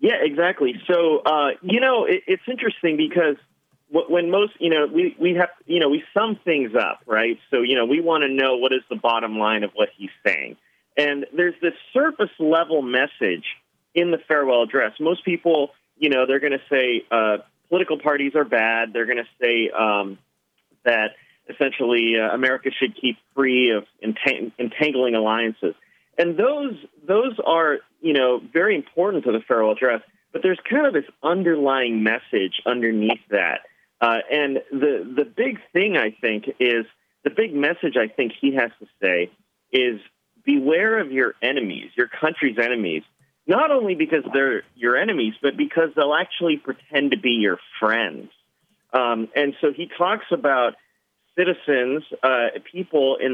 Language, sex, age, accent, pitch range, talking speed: English, male, 30-49, American, 120-170 Hz, 165 wpm